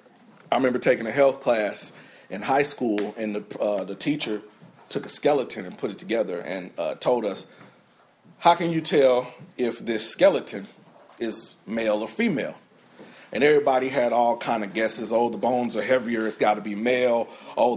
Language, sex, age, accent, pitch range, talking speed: English, male, 40-59, American, 125-170 Hz, 180 wpm